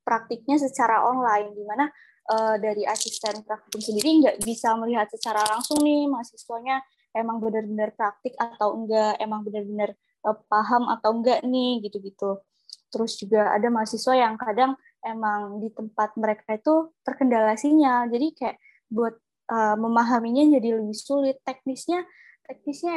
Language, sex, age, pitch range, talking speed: Indonesian, female, 20-39, 215-255 Hz, 140 wpm